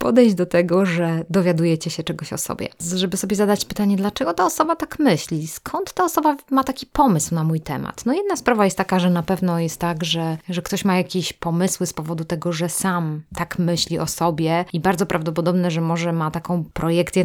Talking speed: 210 wpm